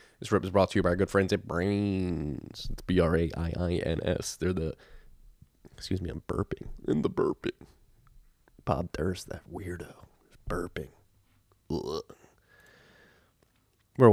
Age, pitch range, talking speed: 20-39, 90-95 Hz, 155 wpm